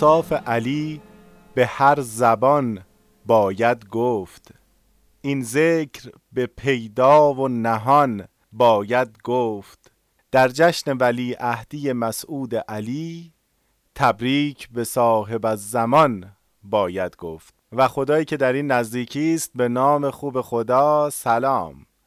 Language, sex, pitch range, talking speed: Persian, male, 115-140 Hz, 105 wpm